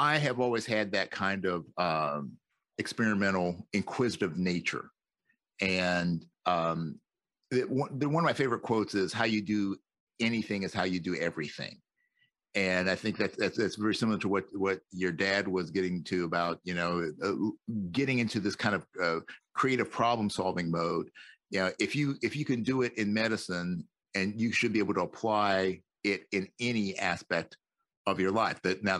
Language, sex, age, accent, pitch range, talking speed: English, male, 50-69, American, 90-115 Hz, 170 wpm